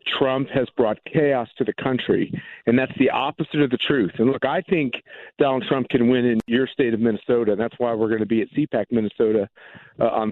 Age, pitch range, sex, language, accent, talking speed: 50-69, 115-140 Hz, male, English, American, 225 wpm